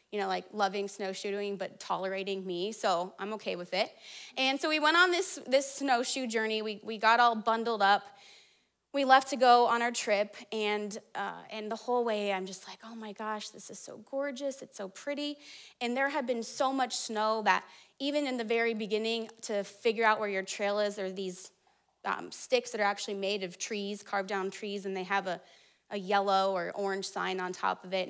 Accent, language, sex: American, English, female